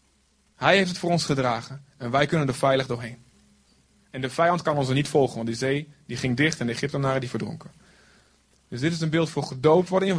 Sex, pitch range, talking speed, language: male, 120-180 Hz, 225 wpm, Dutch